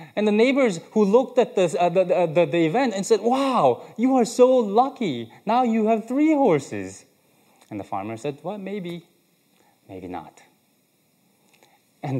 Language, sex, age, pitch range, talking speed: English, male, 20-39, 120-175 Hz, 160 wpm